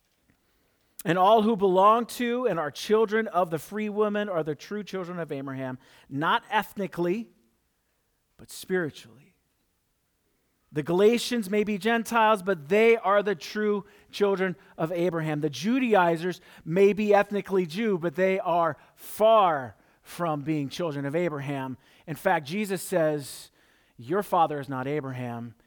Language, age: English, 40-59